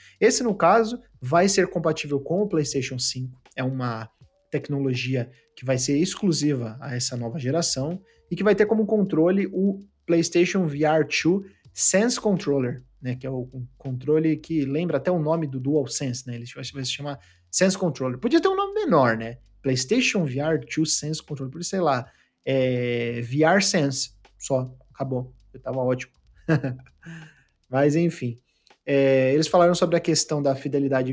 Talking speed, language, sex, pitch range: 165 wpm, Portuguese, male, 125-165 Hz